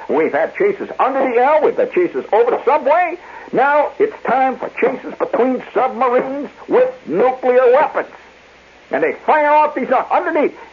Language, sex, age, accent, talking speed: English, male, 60-79, American, 160 wpm